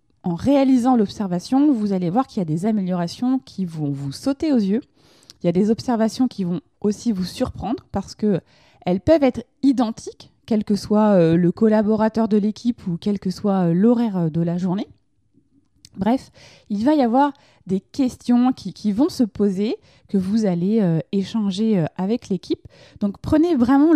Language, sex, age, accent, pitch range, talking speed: French, female, 20-39, French, 180-245 Hz, 175 wpm